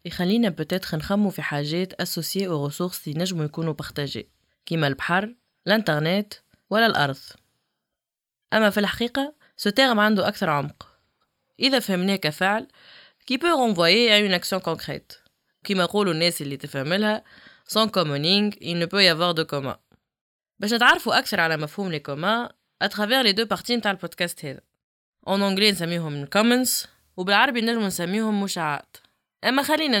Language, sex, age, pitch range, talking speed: French, female, 20-39, 160-215 Hz, 130 wpm